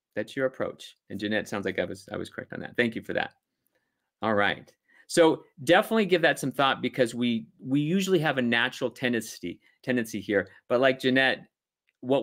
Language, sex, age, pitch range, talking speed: English, male, 30-49, 105-130 Hz, 195 wpm